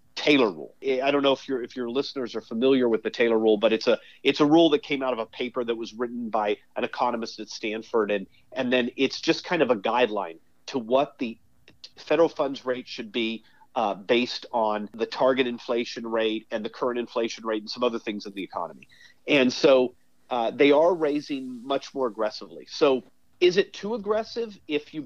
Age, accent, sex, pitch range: 40-59, American, male, 115-150 Hz